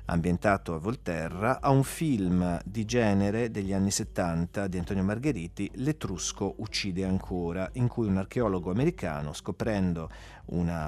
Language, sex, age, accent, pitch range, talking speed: Italian, male, 40-59, native, 90-120 Hz, 130 wpm